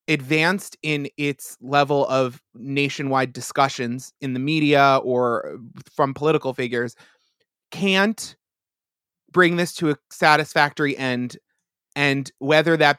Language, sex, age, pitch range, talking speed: English, male, 20-39, 130-155 Hz, 110 wpm